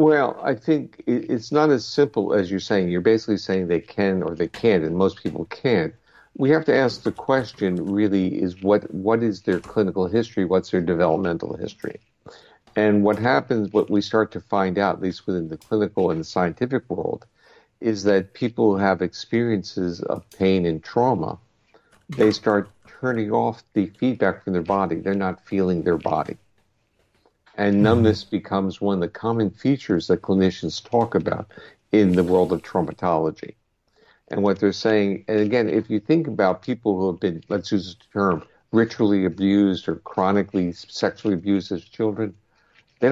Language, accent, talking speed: English, American, 175 wpm